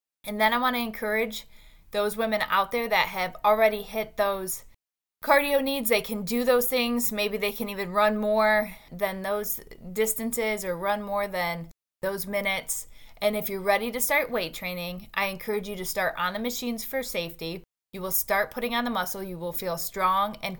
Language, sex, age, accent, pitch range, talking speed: English, female, 20-39, American, 185-220 Hz, 195 wpm